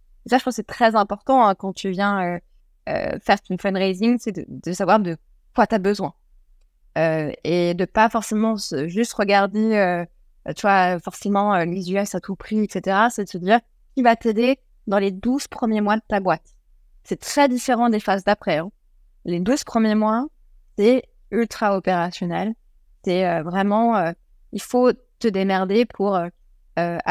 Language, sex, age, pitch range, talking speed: French, female, 20-39, 170-215 Hz, 185 wpm